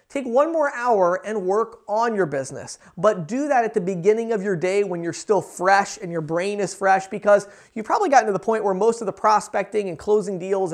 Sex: male